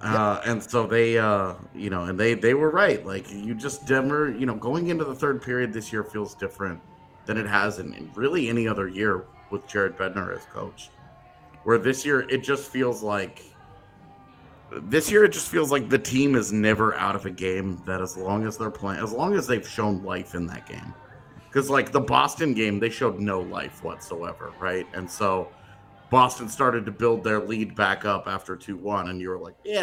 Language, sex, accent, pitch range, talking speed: English, male, American, 100-130 Hz, 215 wpm